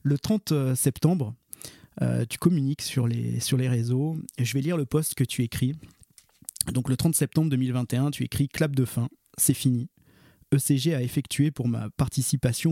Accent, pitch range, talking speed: French, 125-150 Hz, 185 wpm